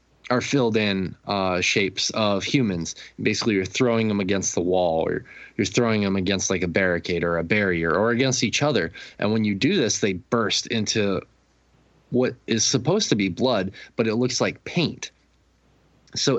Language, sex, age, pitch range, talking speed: English, male, 20-39, 95-115 Hz, 180 wpm